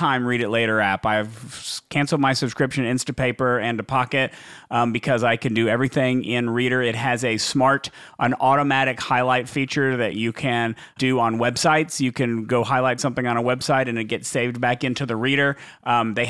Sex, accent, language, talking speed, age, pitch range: male, American, English, 195 wpm, 30-49, 120-140 Hz